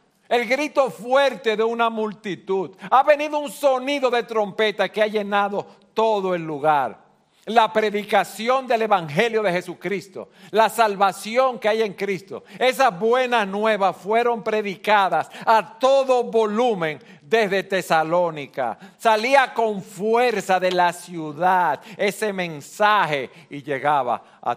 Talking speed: 125 wpm